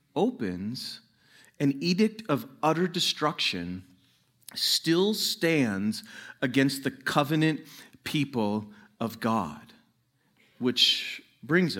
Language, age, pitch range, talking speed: English, 40-59, 110-150 Hz, 80 wpm